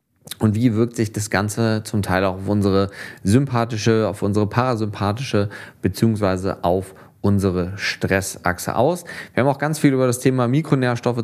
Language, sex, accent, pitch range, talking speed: German, male, German, 100-120 Hz, 155 wpm